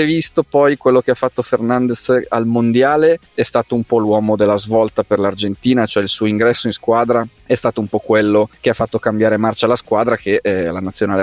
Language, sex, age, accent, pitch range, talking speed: Italian, male, 30-49, native, 100-125 Hz, 215 wpm